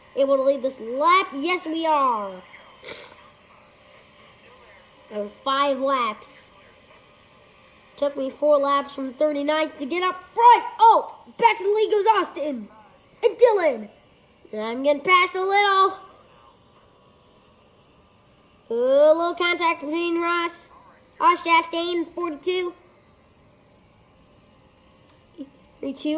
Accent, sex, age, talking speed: American, female, 20-39, 110 wpm